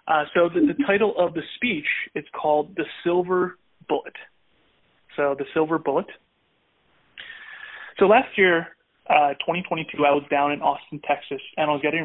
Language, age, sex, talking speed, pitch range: English, 30-49, male, 160 wpm, 145-180 Hz